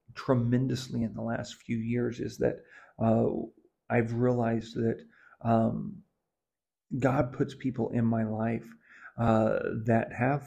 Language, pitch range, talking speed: English, 115-125 Hz, 125 wpm